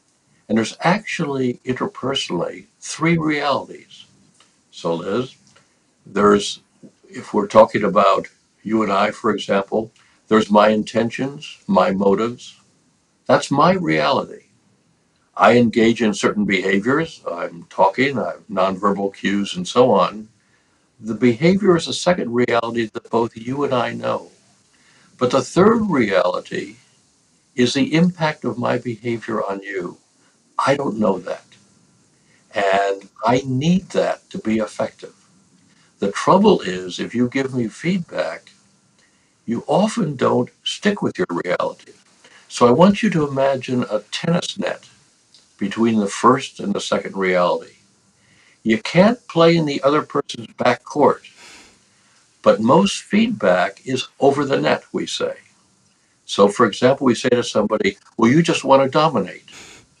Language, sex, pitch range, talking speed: English, male, 105-155 Hz, 135 wpm